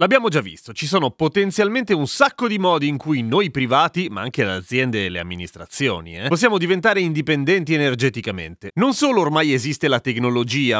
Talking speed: 180 wpm